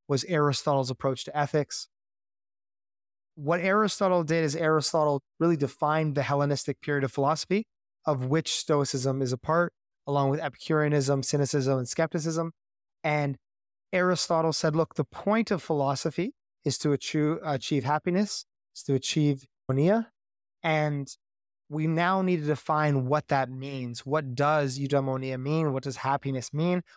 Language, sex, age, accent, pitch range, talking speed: English, male, 20-39, American, 135-165 Hz, 140 wpm